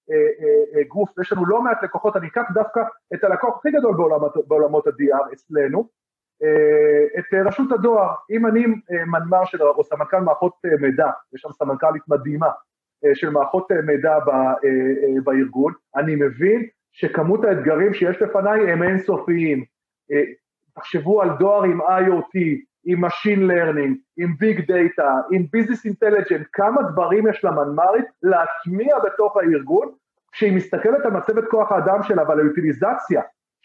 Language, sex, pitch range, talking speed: Hebrew, male, 170-225 Hz, 130 wpm